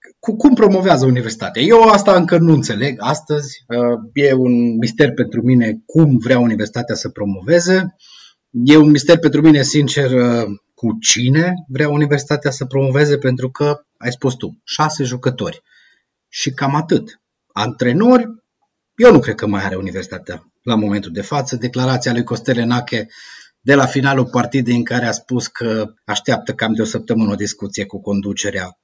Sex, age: male, 30-49